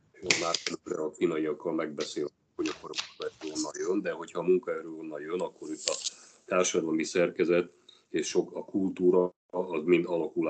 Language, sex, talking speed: Hungarian, male, 165 wpm